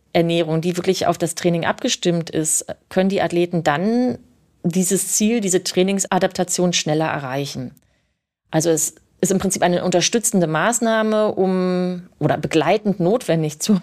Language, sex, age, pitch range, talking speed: German, female, 30-49, 165-210 Hz, 130 wpm